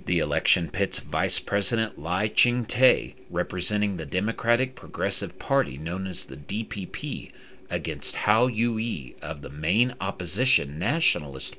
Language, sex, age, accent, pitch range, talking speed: English, male, 40-59, American, 90-125 Hz, 125 wpm